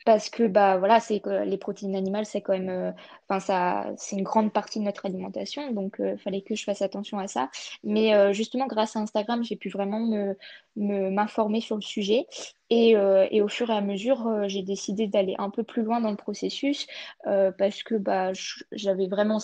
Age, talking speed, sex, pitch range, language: 20-39, 220 wpm, female, 195-225 Hz, French